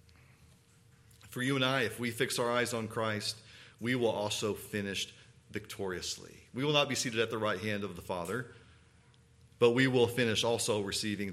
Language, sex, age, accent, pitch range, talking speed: English, male, 40-59, American, 110-135 Hz, 180 wpm